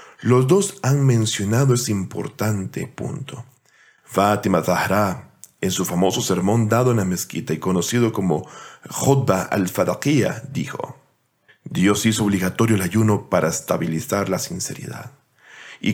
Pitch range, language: 95-120 Hz, Spanish